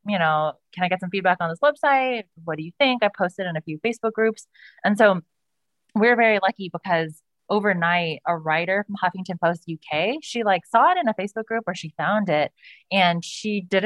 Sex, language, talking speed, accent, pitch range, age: female, English, 210 wpm, American, 170-215 Hz, 20-39